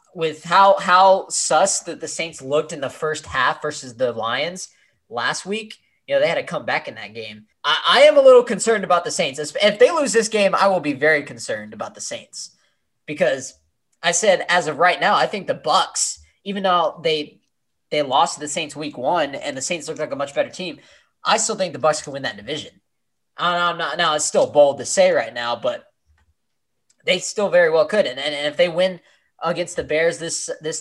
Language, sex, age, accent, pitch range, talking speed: English, male, 20-39, American, 150-195 Hz, 225 wpm